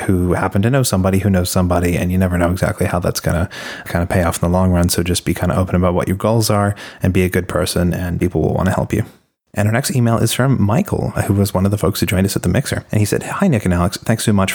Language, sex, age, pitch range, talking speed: English, male, 30-49, 90-110 Hz, 320 wpm